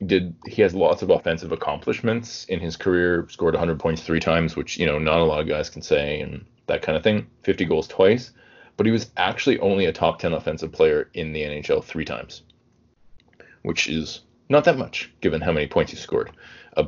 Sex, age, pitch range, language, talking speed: male, 30-49, 80-115 Hz, English, 215 wpm